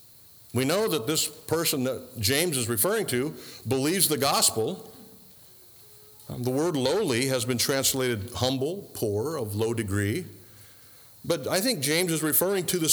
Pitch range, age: 110-160 Hz, 50-69